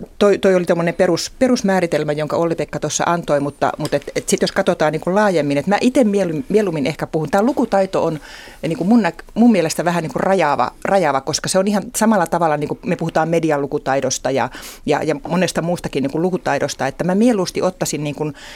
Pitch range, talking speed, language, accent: 155-195 Hz, 180 wpm, Finnish, native